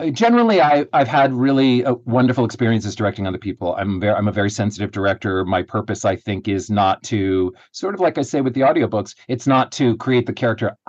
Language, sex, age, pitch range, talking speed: English, male, 40-59, 100-135 Hz, 215 wpm